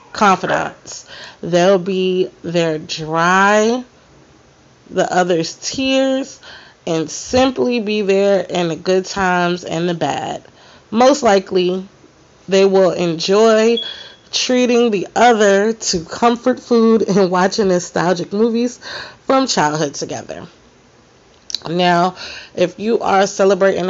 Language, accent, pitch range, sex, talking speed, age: English, American, 165-215 Hz, female, 105 wpm, 30-49